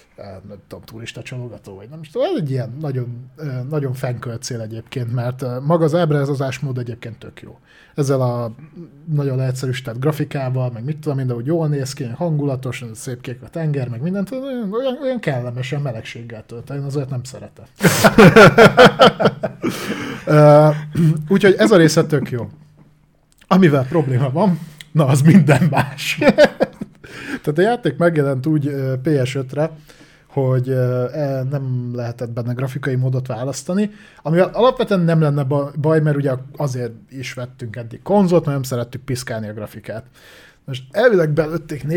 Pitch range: 125-160 Hz